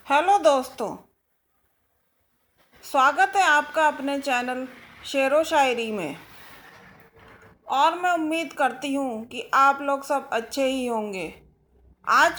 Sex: female